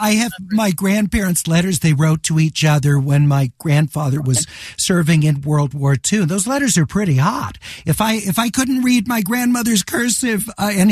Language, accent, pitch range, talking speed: English, American, 150-215 Hz, 185 wpm